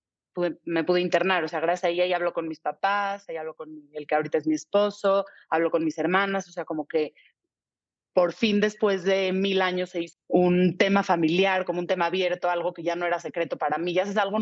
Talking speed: 230 wpm